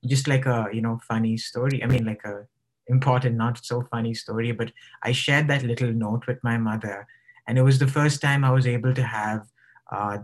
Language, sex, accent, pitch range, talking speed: English, male, Indian, 115-130 Hz, 215 wpm